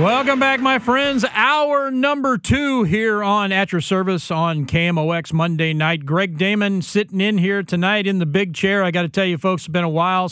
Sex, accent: male, American